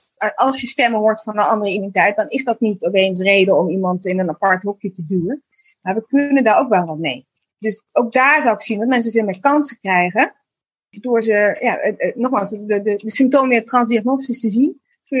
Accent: Dutch